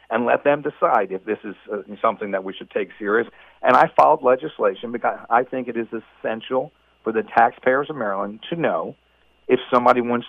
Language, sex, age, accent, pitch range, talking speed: English, male, 50-69, American, 110-130 Hz, 190 wpm